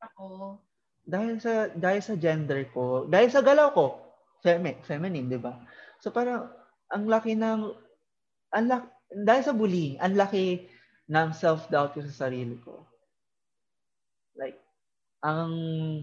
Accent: native